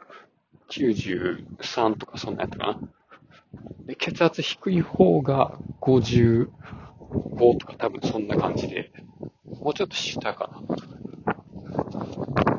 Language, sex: Japanese, male